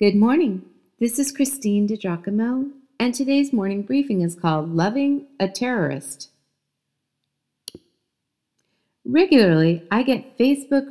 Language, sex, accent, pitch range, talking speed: English, female, American, 175-260 Hz, 105 wpm